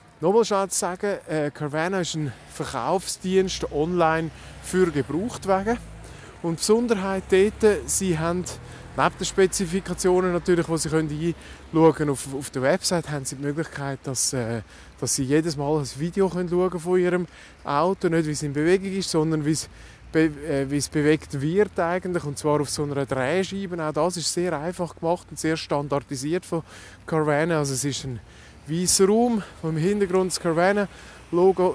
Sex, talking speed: male, 170 wpm